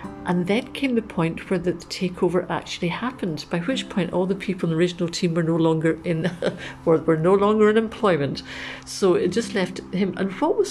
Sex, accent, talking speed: female, British, 205 wpm